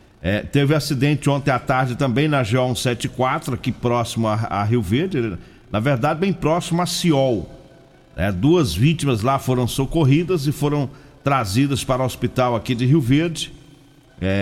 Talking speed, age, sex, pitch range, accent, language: 155 wpm, 50-69, male, 115-145 Hz, Brazilian, Portuguese